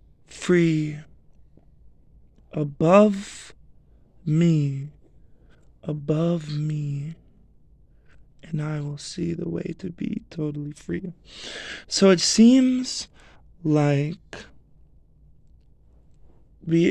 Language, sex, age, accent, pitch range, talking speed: English, male, 20-39, American, 150-170 Hz, 70 wpm